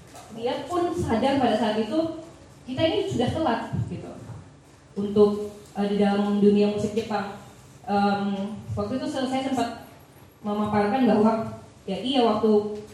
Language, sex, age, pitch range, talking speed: Indonesian, female, 20-39, 200-250 Hz, 130 wpm